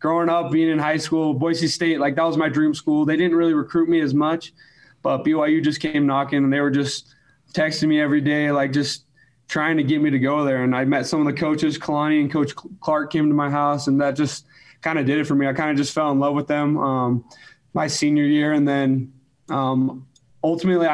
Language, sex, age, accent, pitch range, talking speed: English, male, 20-39, American, 140-155 Hz, 240 wpm